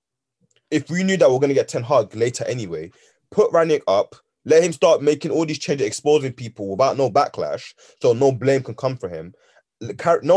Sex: male